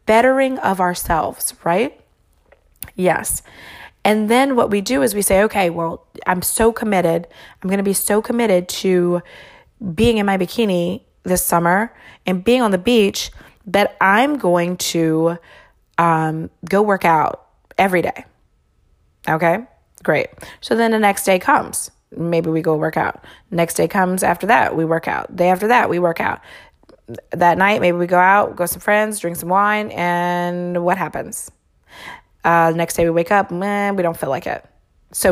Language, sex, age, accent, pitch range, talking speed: English, female, 20-39, American, 170-205 Hz, 175 wpm